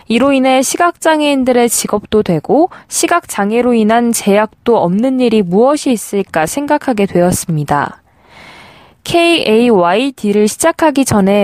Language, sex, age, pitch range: Korean, female, 20-39, 205-280 Hz